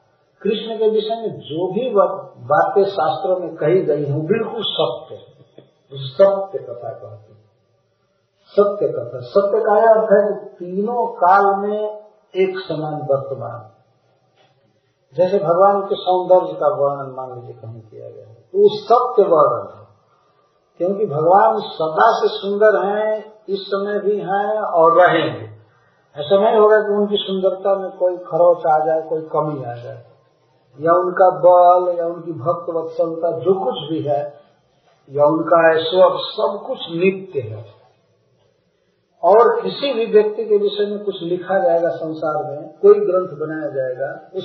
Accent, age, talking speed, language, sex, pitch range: native, 50-69, 145 wpm, Hindi, male, 150-205 Hz